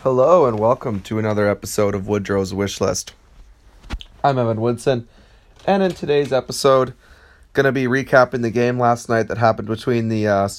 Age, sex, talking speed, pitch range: 30-49, male, 160 wpm, 105-130 Hz